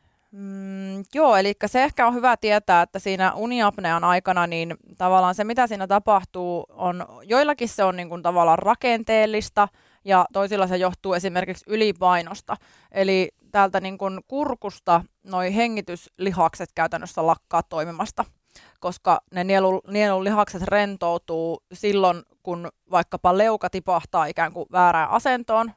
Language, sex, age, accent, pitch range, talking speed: Finnish, female, 20-39, native, 175-200 Hz, 130 wpm